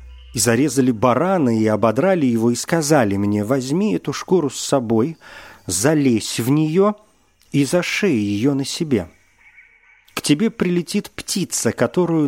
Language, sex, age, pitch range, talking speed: Russian, male, 40-59, 90-140 Hz, 130 wpm